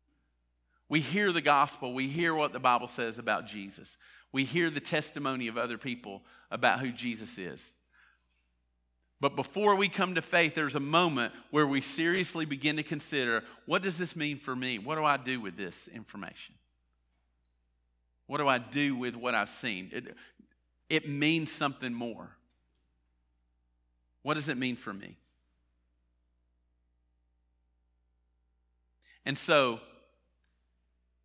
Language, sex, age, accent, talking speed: English, male, 50-69, American, 140 wpm